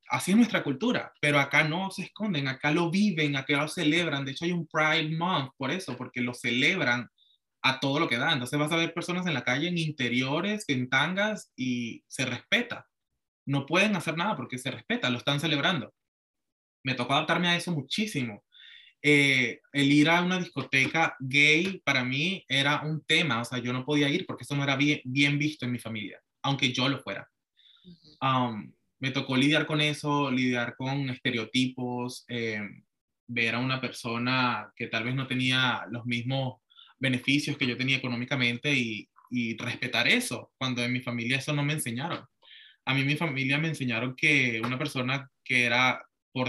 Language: Spanish